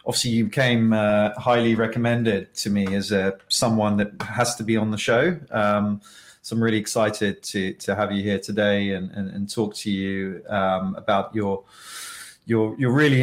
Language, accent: English, British